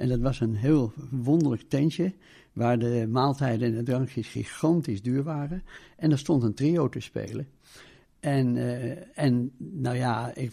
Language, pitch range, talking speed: Dutch, 120-145 Hz, 165 wpm